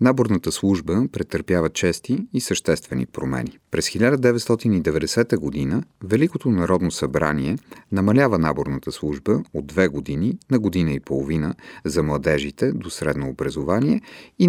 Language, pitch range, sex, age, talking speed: Bulgarian, 70-110 Hz, male, 40-59, 120 wpm